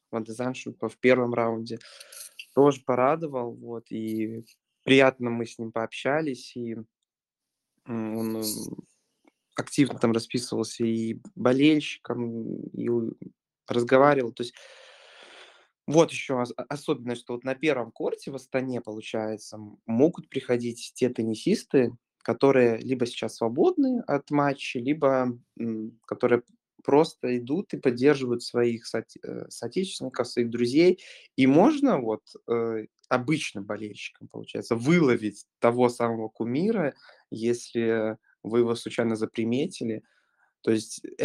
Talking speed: 110 wpm